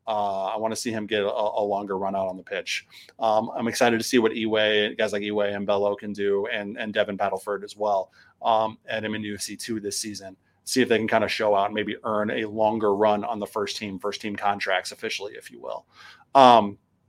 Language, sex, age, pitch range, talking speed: English, male, 30-49, 100-125 Hz, 240 wpm